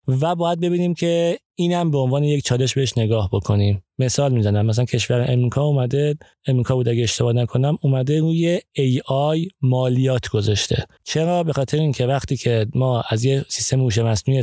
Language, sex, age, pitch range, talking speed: Persian, male, 30-49, 120-145 Hz, 170 wpm